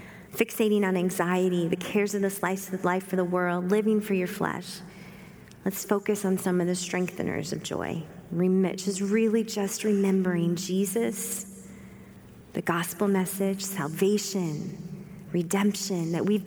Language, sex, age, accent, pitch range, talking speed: English, female, 30-49, American, 180-220 Hz, 140 wpm